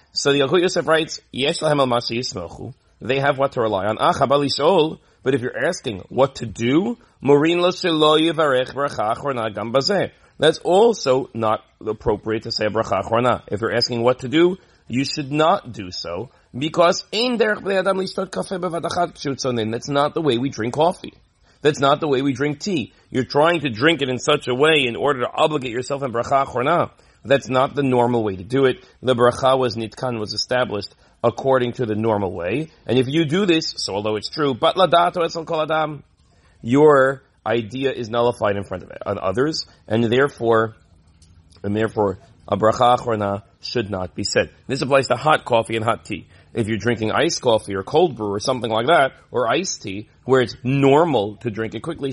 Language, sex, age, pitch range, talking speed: English, male, 40-59, 110-145 Hz, 165 wpm